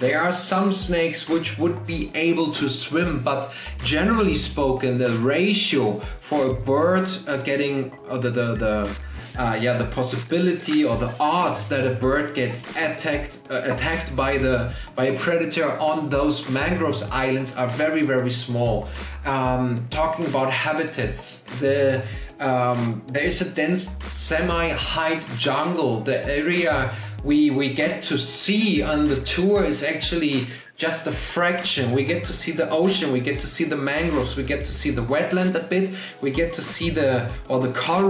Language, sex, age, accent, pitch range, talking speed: English, male, 30-49, German, 125-165 Hz, 170 wpm